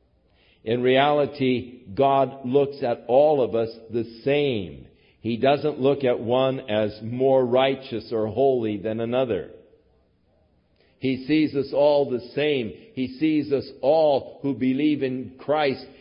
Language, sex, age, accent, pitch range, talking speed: English, male, 50-69, American, 115-155 Hz, 135 wpm